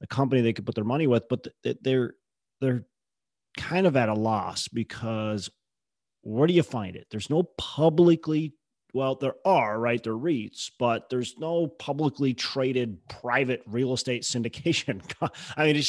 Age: 30-49